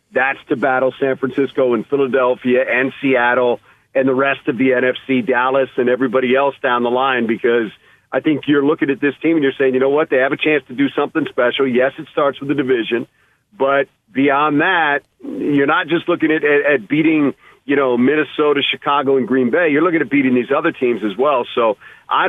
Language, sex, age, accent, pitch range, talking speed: English, male, 50-69, American, 130-155 Hz, 215 wpm